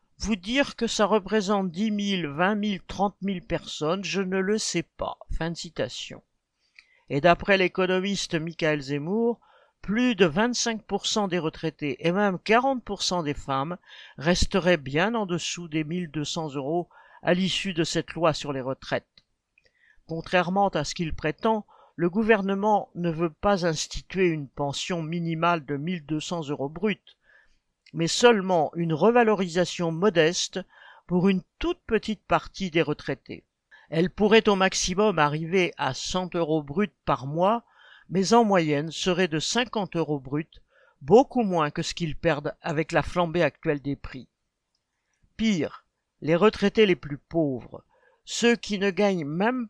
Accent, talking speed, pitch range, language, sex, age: French, 145 wpm, 160-210 Hz, French, male, 50-69